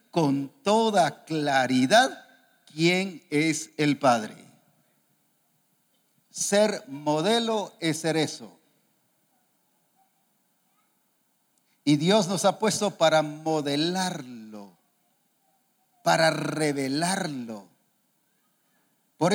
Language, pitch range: English, 165-220 Hz